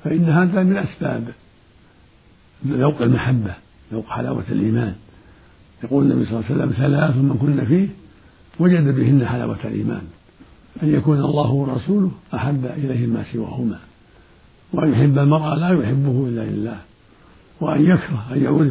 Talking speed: 130 wpm